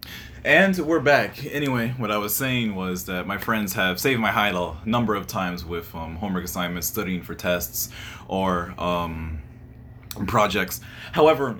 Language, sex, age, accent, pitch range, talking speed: English, male, 20-39, American, 95-125 Hz, 160 wpm